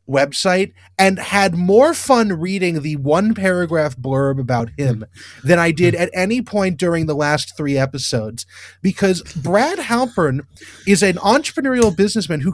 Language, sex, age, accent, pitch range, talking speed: English, male, 30-49, American, 150-235 Hz, 145 wpm